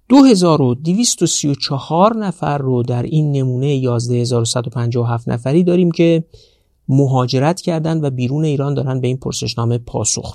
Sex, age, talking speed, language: male, 50-69, 115 wpm, Persian